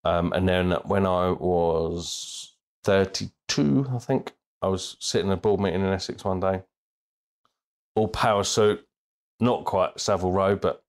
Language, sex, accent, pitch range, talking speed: English, male, British, 90-110 Hz, 155 wpm